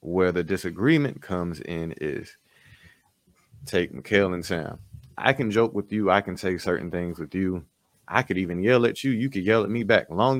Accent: American